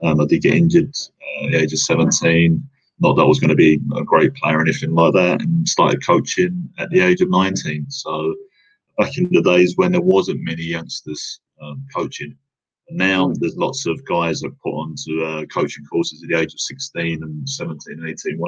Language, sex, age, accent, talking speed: English, male, 30-49, British, 210 wpm